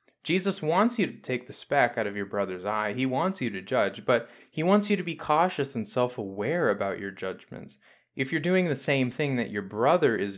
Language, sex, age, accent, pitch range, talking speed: English, male, 20-39, American, 105-140 Hz, 225 wpm